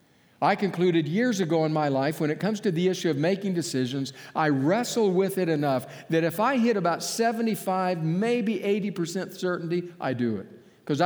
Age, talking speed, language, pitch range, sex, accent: 50-69, 185 wpm, English, 140-190 Hz, male, American